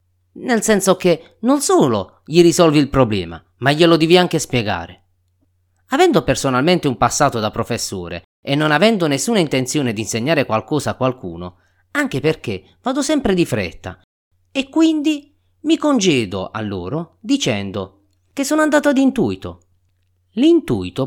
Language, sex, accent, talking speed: Italian, male, native, 140 wpm